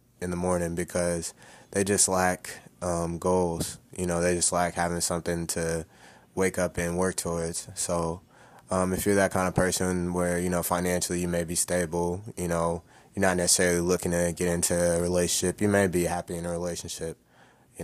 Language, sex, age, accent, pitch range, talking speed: English, male, 20-39, American, 85-90 Hz, 190 wpm